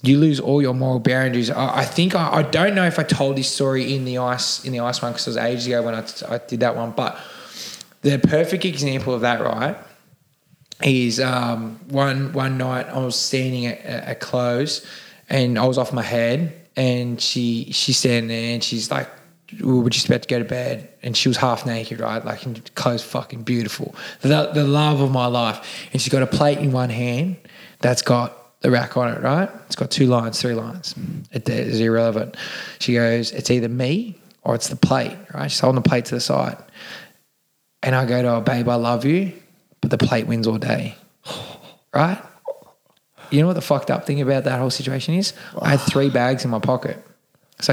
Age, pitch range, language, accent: 20-39, 120-150 Hz, English, Australian